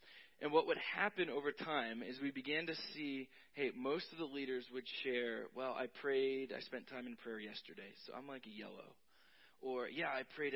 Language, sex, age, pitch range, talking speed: English, male, 20-39, 120-155 Hz, 205 wpm